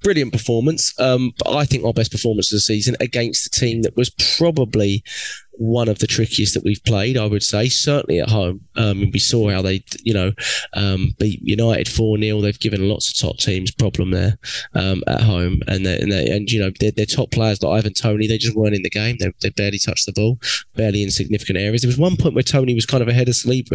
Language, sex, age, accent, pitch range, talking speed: English, male, 20-39, British, 105-130 Hz, 240 wpm